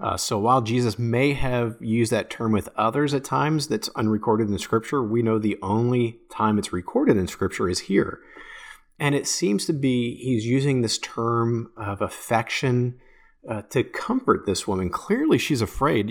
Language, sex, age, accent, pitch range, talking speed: English, male, 30-49, American, 105-130 Hz, 180 wpm